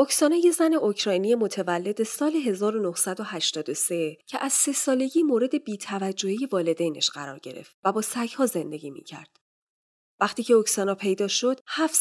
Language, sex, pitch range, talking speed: Persian, female, 195-265 Hz, 135 wpm